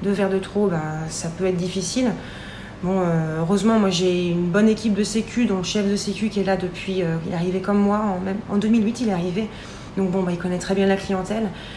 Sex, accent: female, French